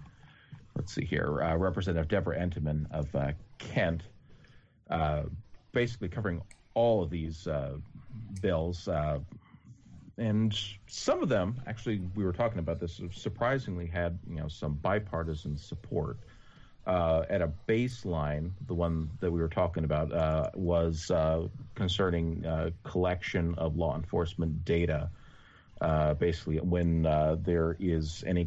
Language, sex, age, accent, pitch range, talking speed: English, male, 40-59, American, 75-95 Hz, 135 wpm